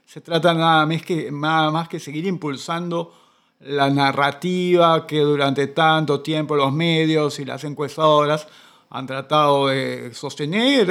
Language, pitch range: Spanish, 145-190 Hz